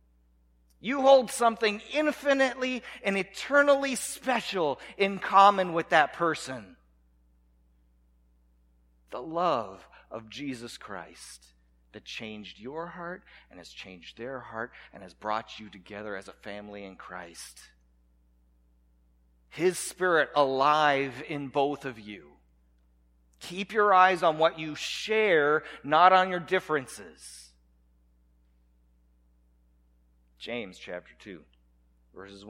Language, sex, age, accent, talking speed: English, male, 40-59, American, 105 wpm